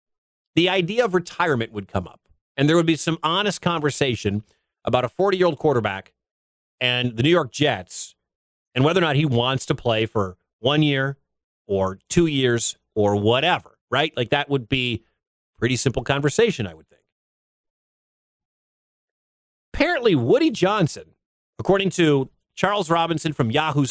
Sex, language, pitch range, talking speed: male, English, 110-165 Hz, 150 wpm